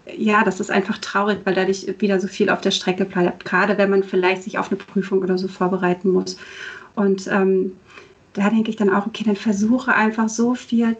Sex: female